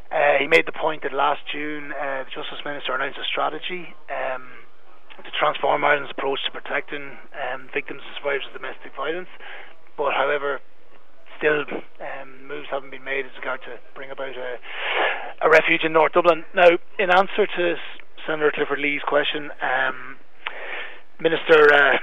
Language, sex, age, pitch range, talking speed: English, male, 20-39, 145-165 Hz, 160 wpm